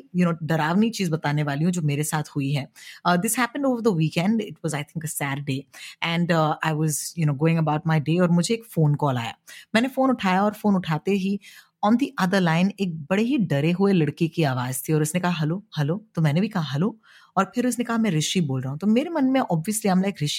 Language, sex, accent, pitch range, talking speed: Hindi, female, native, 155-210 Hz, 155 wpm